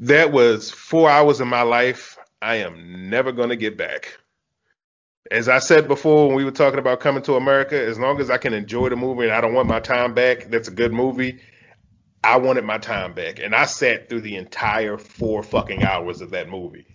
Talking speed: 215 wpm